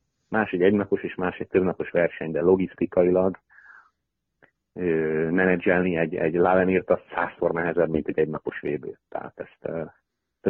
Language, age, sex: Hungarian, 30-49, male